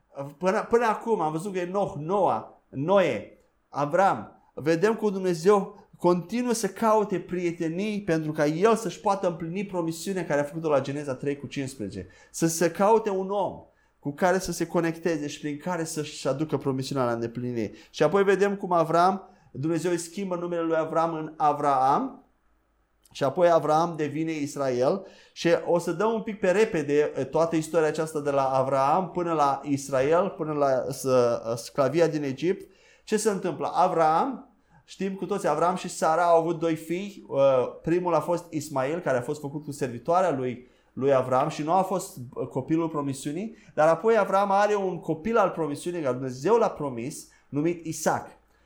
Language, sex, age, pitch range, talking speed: Romanian, male, 30-49, 145-185 Hz, 170 wpm